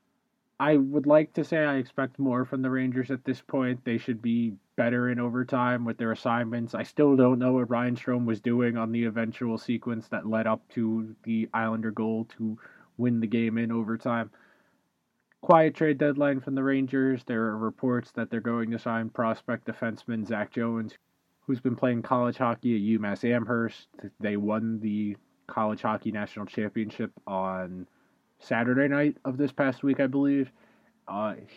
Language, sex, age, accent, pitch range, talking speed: English, male, 20-39, American, 110-130 Hz, 175 wpm